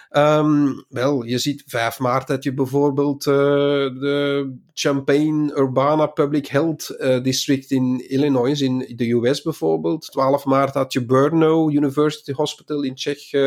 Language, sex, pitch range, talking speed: Dutch, male, 135-165 Hz, 140 wpm